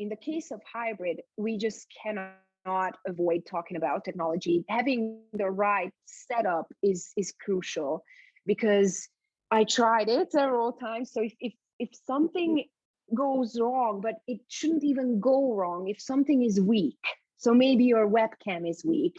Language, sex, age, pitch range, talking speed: English, female, 30-49, 195-250 Hz, 155 wpm